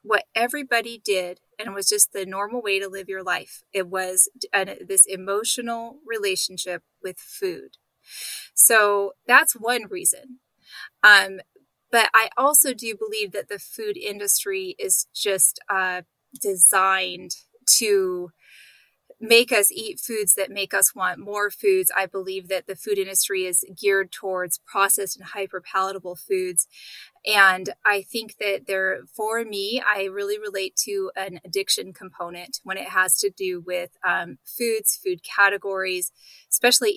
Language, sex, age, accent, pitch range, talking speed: English, female, 20-39, American, 190-255 Hz, 145 wpm